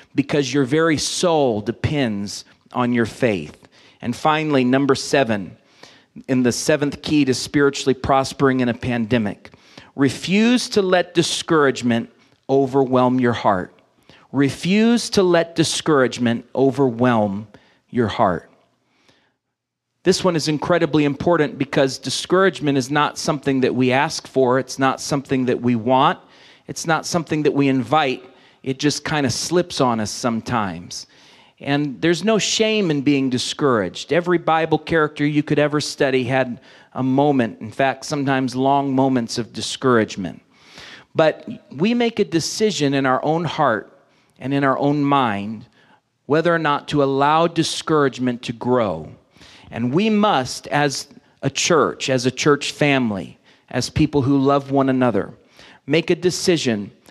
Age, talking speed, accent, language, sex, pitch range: 40-59, 140 wpm, American, English, male, 125-155 Hz